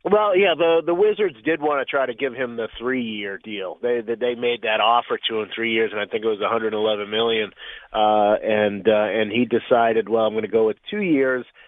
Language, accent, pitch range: English, American, 115-135 Hz